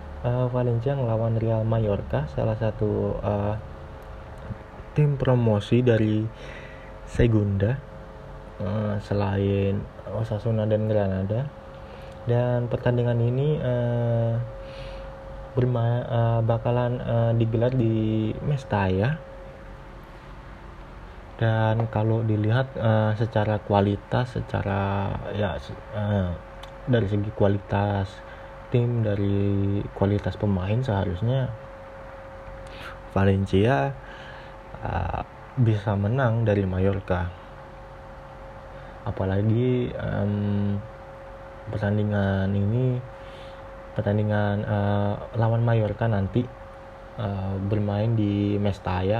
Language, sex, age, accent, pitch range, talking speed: Indonesian, male, 20-39, native, 100-115 Hz, 80 wpm